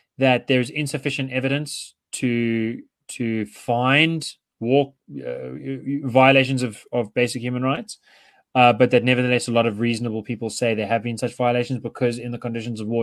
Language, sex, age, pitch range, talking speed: English, male, 20-39, 110-135 Hz, 165 wpm